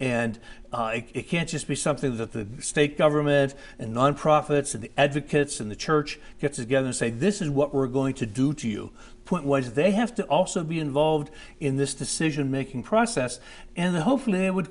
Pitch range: 130-165 Hz